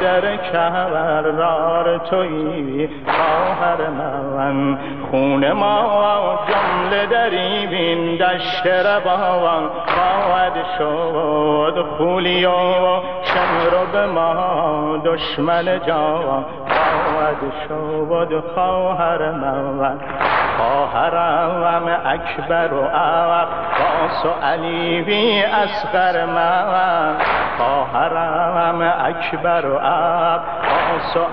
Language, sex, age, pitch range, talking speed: Persian, male, 60-79, 155-180 Hz, 40 wpm